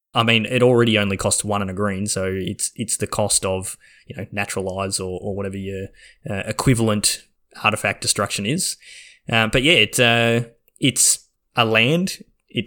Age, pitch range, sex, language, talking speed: 10-29, 95-120 Hz, male, English, 175 wpm